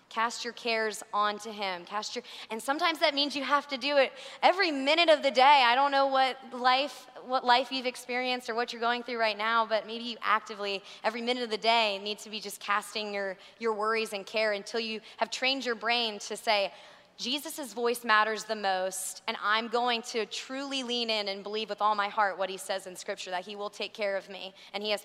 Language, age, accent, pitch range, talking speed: English, 20-39, American, 205-245 Hz, 230 wpm